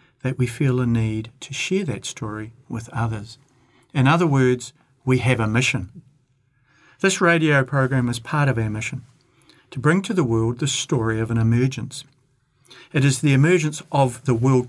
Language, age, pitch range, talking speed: English, 50-69, 120-145 Hz, 175 wpm